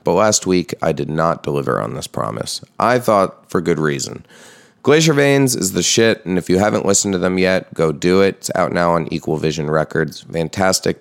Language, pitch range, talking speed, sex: English, 85-110 Hz, 215 wpm, male